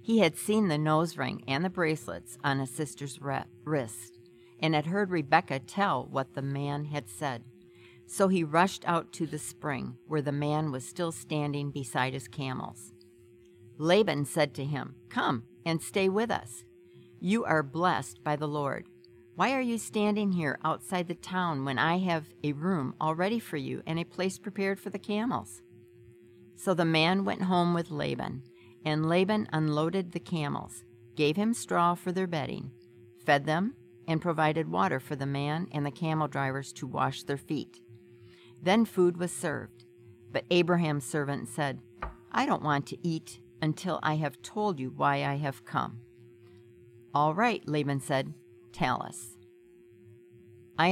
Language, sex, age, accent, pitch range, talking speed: English, female, 50-69, American, 120-175 Hz, 165 wpm